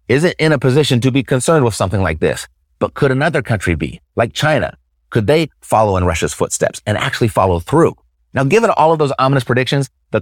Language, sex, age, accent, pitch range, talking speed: English, male, 30-49, American, 90-125 Hz, 215 wpm